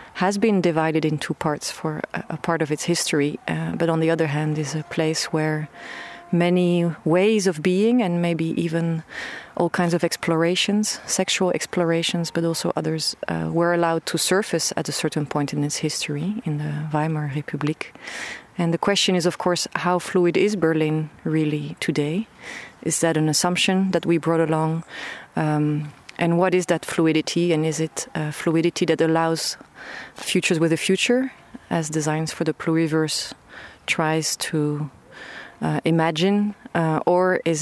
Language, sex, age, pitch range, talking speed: English, female, 30-49, 155-175 Hz, 160 wpm